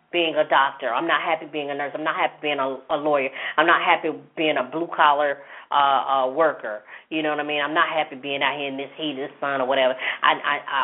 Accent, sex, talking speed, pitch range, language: American, female, 255 wpm, 140-175 Hz, English